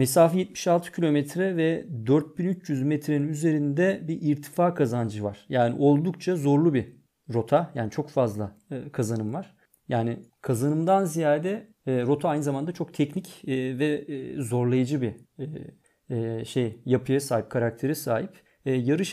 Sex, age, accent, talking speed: male, 40-59, native, 120 wpm